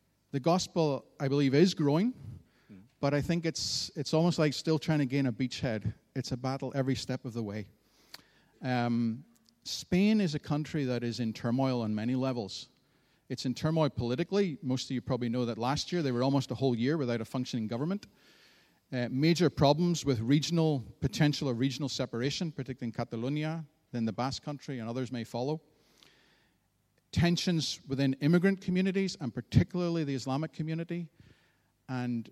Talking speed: 170 wpm